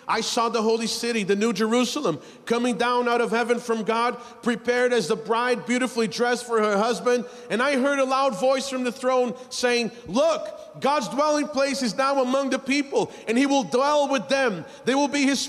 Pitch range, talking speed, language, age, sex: 245-290 Hz, 205 wpm, English, 40-59, male